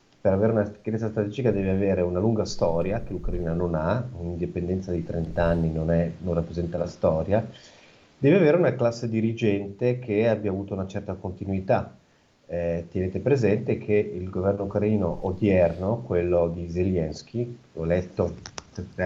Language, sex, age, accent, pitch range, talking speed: Italian, male, 40-59, native, 90-110 Hz, 155 wpm